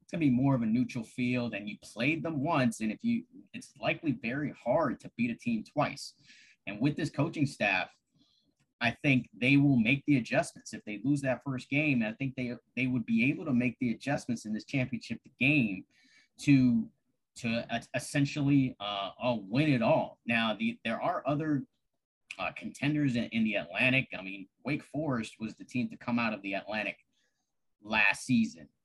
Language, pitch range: English, 110-145 Hz